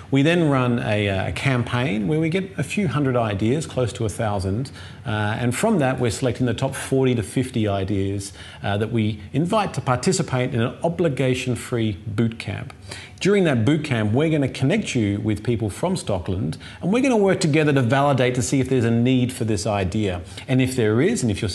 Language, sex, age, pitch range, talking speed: English, male, 40-59, 105-135 Hz, 215 wpm